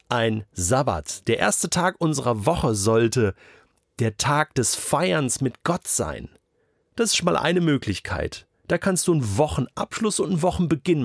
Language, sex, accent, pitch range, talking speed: German, male, German, 110-155 Hz, 155 wpm